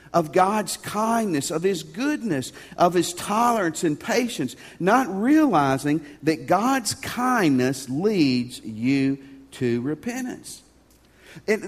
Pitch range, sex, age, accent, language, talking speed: 155-240 Hz, male, 50-69, American, English, 110 wpm